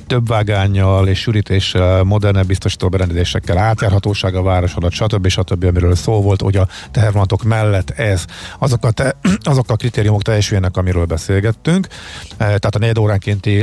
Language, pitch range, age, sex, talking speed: Hungarian, 95-115 Hz, 50-69, male, 145 wpm